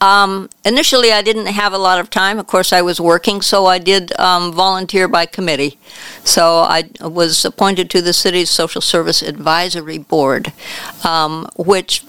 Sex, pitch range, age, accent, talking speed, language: female, 160-190 Hz, 60-79, American, 170 wpm, English